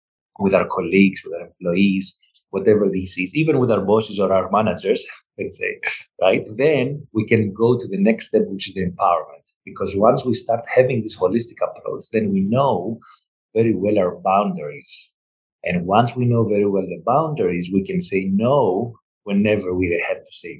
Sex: male